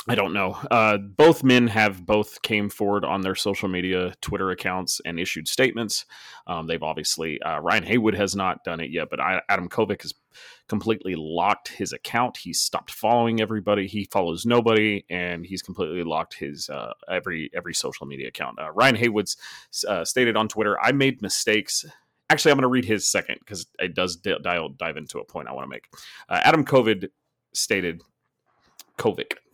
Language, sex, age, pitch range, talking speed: English, male, 30-49, 95-120 Hz, 185 wpm